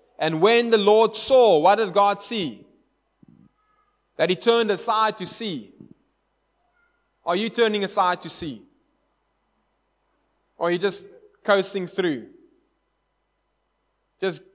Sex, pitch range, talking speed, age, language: male, 160-215 Hz, 115 wpm, 20-39, English